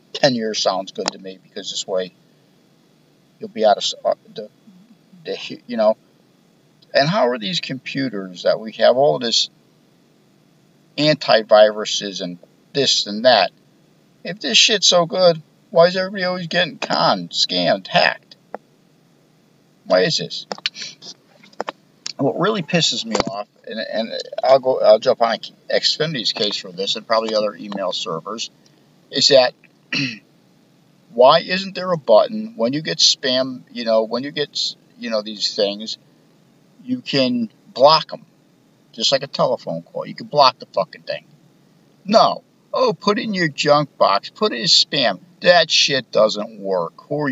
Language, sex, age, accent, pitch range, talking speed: English, male, 50-69, American, 125-180 Hz, 155 wpm